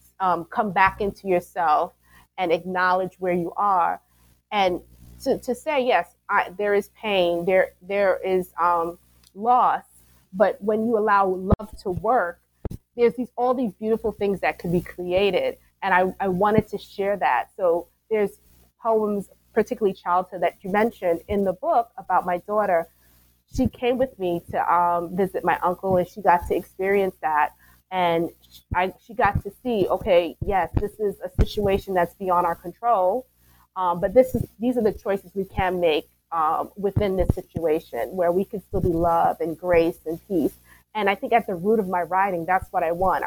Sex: female